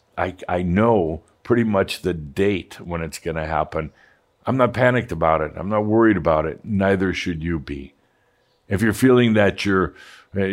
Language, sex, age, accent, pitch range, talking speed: English, male, 60-79, American, 85-105 Hz, 175 wpm